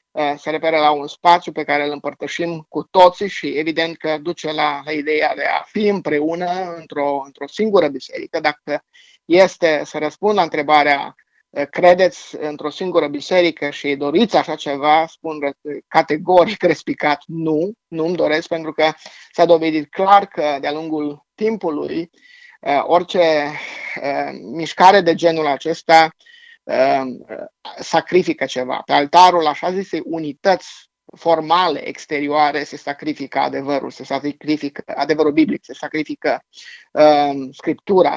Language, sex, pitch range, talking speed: Romanian, male, 145-175 Hz, 125 wpm